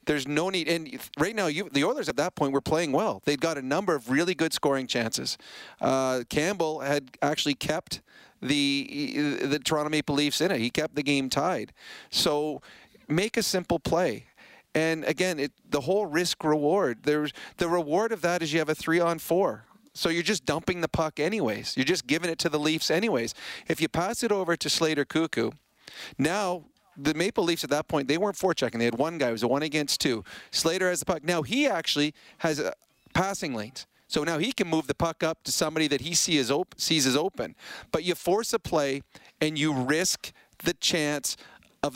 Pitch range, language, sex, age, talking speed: 145-175 Hz, English, male, 40-59, 210 wpm